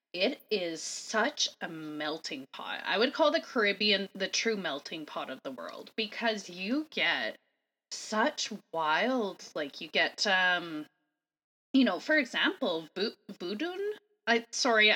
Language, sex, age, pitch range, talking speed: English, female, 20-39, 200-285 Hz, 140 wpm